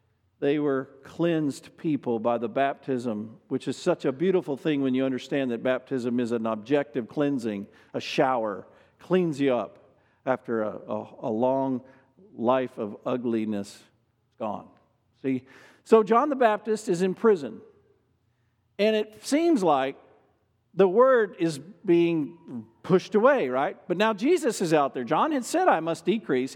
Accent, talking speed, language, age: American, 150 wpm, English, 50-69